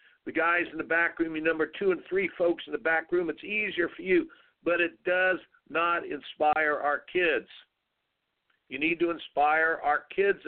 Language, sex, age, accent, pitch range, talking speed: English, male, 50-69, American, 150-200 Hz, 190 wpm